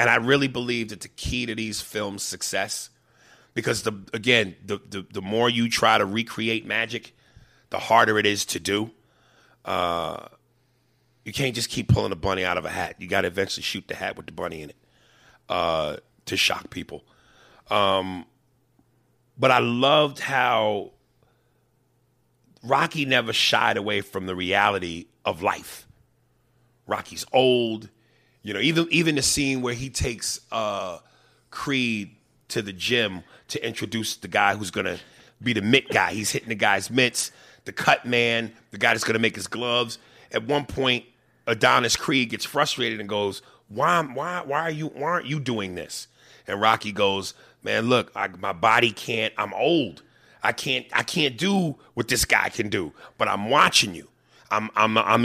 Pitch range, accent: 105-130 Hz, American